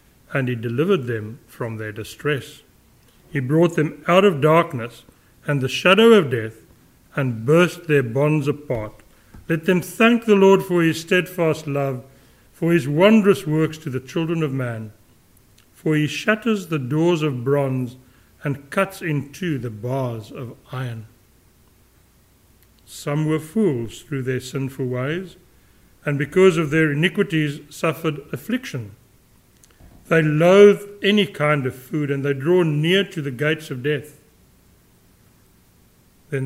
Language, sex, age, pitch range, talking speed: English, male, 60-79, 125-170 Hz, 140 wpm